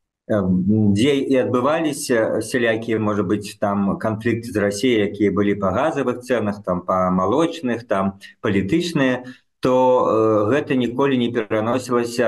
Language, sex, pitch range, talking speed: Russian, male, 100-120 Hz, 125 wpm